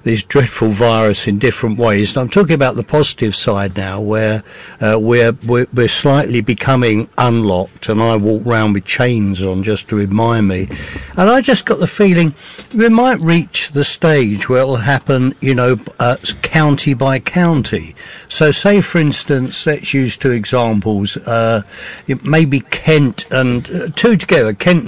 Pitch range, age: 115-165 Hz, 60-79